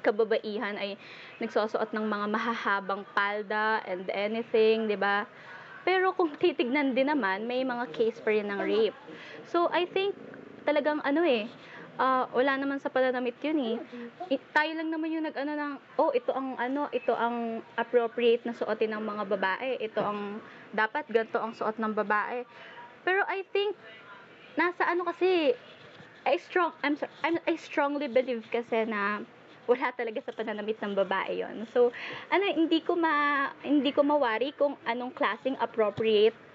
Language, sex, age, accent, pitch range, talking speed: Filipino, female, 20-39, native, 220-295 Hz, 160 wpm